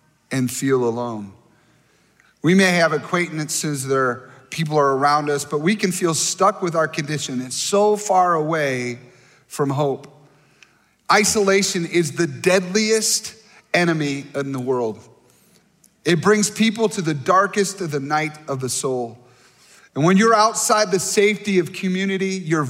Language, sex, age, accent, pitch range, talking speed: English, male, 30-49, American, 145-190 Hz, 145 wpm